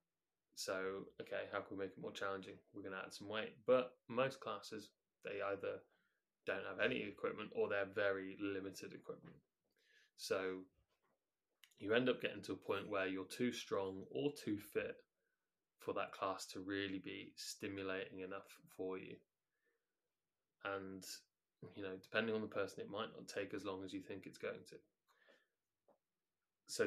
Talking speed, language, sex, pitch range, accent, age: 165 wpm, English, male, 95-115 Hz, British, 20-39